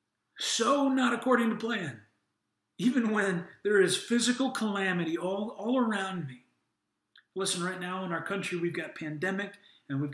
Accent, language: American, English